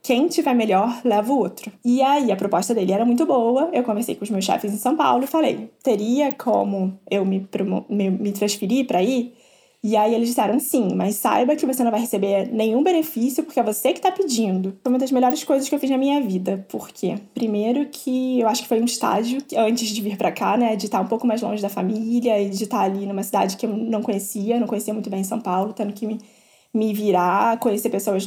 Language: Portuguese